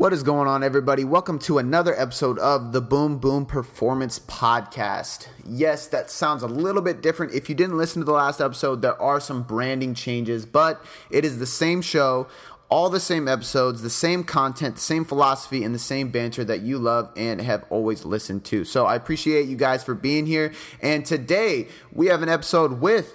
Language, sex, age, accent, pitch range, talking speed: English, male, 30-49, American, 120-155 Hz, 200 wpm